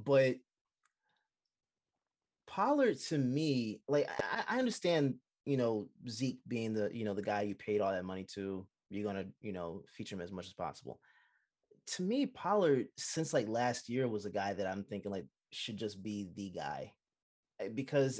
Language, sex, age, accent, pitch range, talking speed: English, male, 20-39, American, 105-140 Hz, 180 wpm